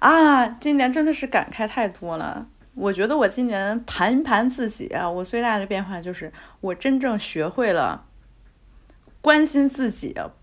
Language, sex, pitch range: Chinese, female, 185-260 Hz